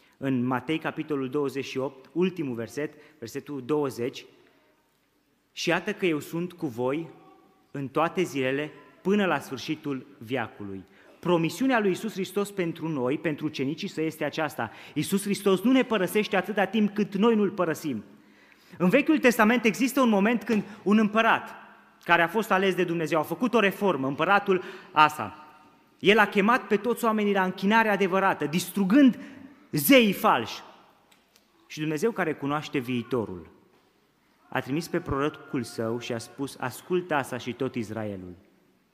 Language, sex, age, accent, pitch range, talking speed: Romanian, male, 30-49, native, 125-190 Hz, 145 wpm